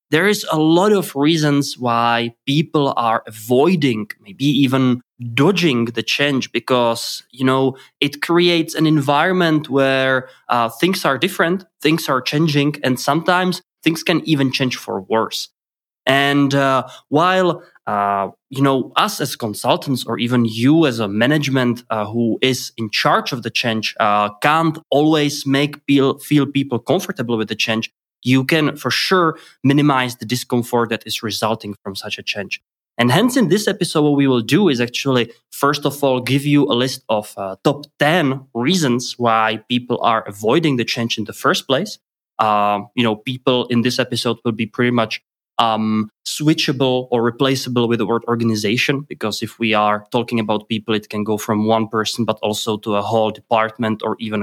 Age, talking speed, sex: 20-39, 175 wpm, male